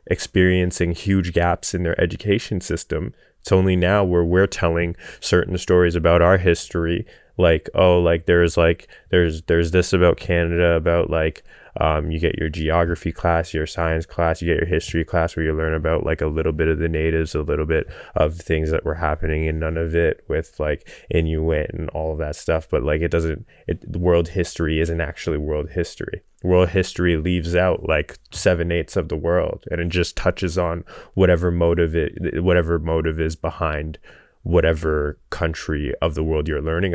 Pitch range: 80-90 Hz